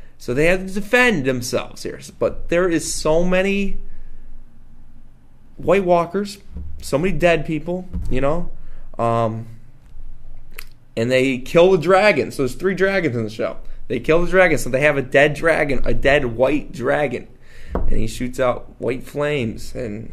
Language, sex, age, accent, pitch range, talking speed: English, male, 20-39, American, 120-170 Hz, 160 wpm